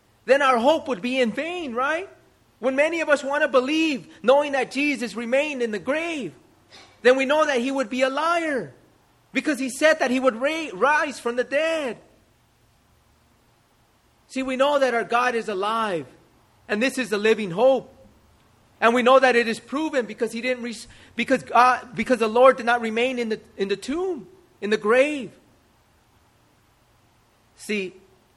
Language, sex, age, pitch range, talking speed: English, male, 30-49, 175-265 Hz, 180 wpm